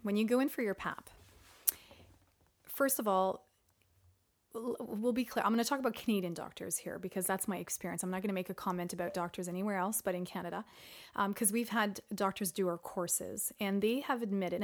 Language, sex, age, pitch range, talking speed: English, female, 30-49, 185-235 Hz, 210 wpm